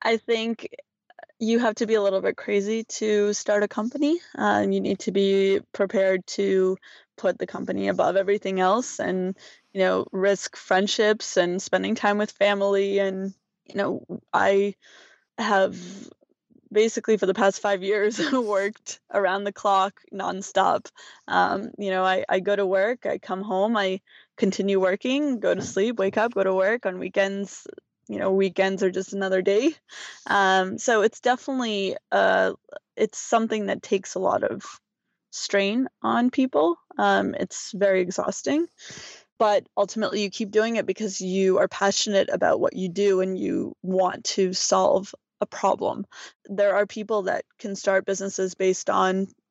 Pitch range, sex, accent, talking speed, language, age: 190-220 Hz, female, American, 160 wpm, English, 20-39